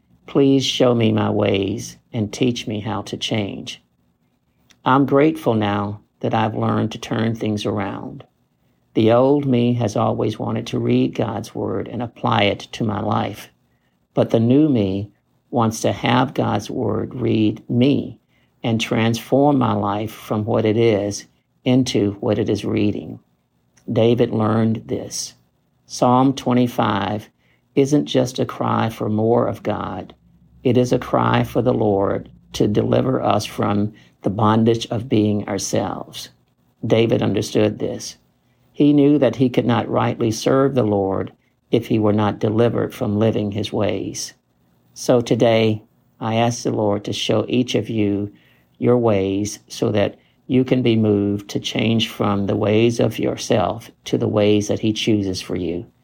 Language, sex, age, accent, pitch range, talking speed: English, male, 50-69, American, 105-120 Hz, 155 wpm